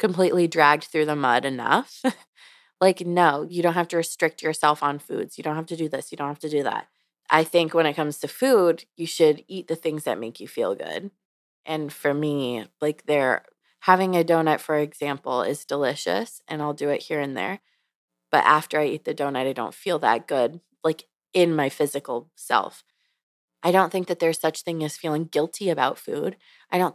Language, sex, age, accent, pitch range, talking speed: English, female, 20-39, American, 150-180 Hz, 210 wpm